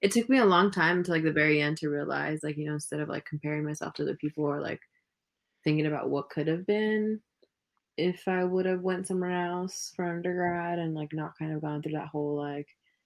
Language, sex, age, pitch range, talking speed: English, female, 20-39, 150-180 Hz, 240 wpm